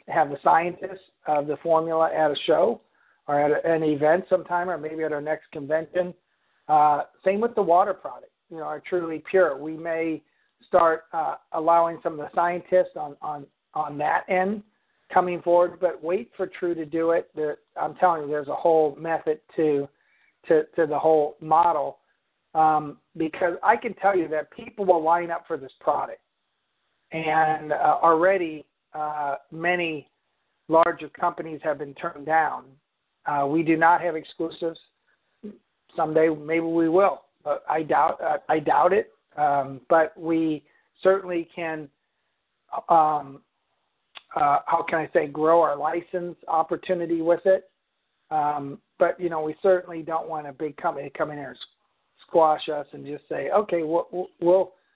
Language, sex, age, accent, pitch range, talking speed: English, male, 50-69, American, 155-175 Hz, 165 wpm